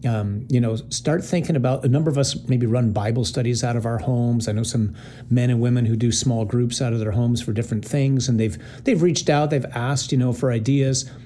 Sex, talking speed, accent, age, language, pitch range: male, 245 wpm, American, 40-59, English, 120-140 Hz